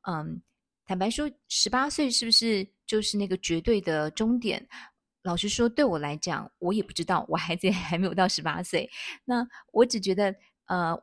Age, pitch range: 20-39, 175-225 Hz